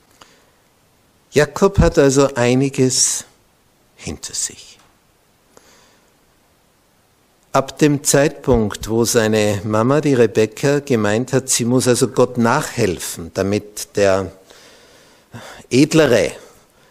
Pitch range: 110-140 Hz